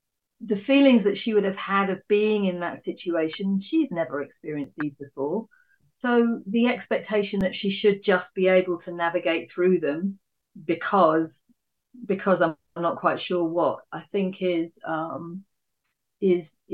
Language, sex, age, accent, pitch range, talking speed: English, female, 40-59, British, 170-195 Hz, 150 wpm